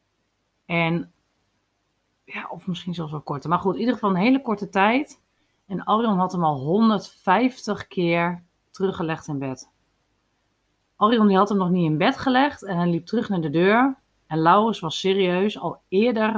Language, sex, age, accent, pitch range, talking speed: Dutch, female, 40-59, Dutch, 140-190 Hz, 175 wpm